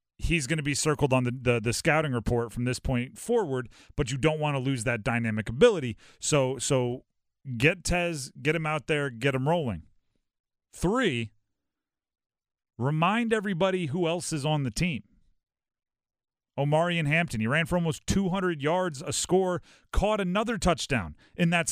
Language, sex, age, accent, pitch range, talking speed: English, male, 40-59, American, 125-180 Hz, 165 wpm